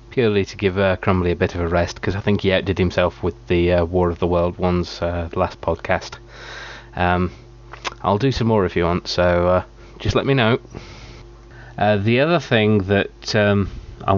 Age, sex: 20-39, male